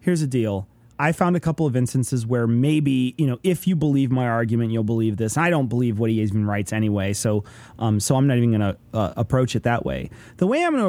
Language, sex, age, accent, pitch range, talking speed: English, male, 30-49, American, 115-165 Hz, 260 wpm